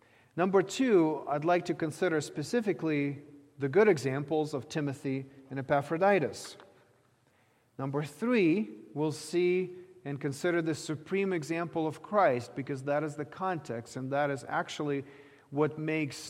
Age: 40-59